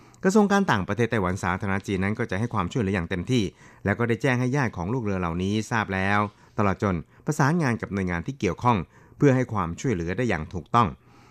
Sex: male